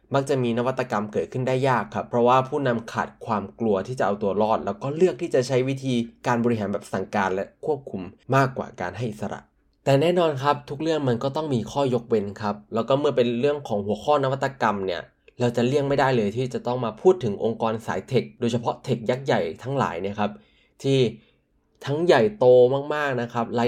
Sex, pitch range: male, 110-145 Hz